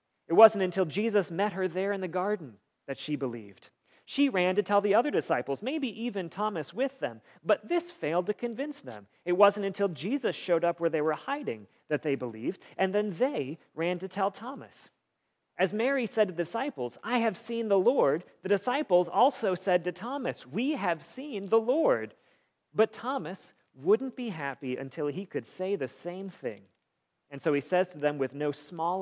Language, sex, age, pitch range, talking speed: English, male, 40-59, 145-210 Hz, 195 wpm